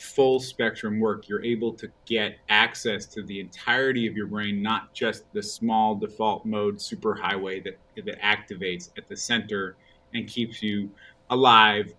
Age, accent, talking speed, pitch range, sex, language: 30-49, American, 155 wpm, 100-125 Hz, male, English